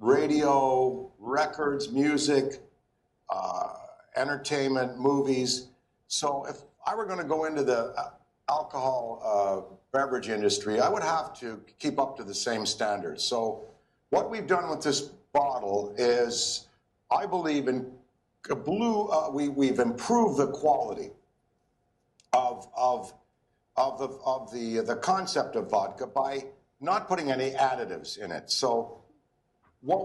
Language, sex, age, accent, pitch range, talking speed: English, male, 60-79, American, 120-150 Hz, 130 wpm